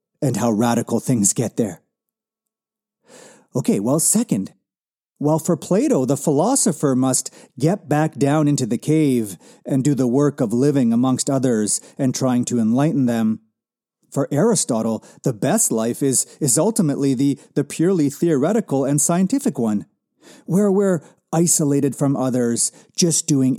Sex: male